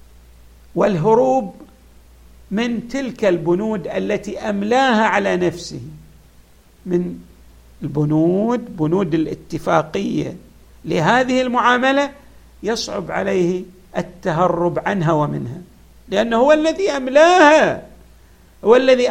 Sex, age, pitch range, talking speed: male, 50-69, 160-235 Hz, 80 wpm